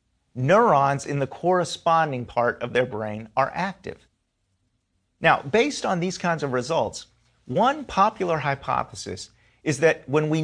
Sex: male